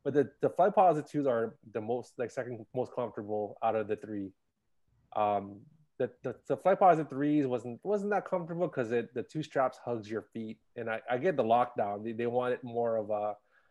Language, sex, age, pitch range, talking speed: English, male, 20-39, 110-135 Hz, 205 wpm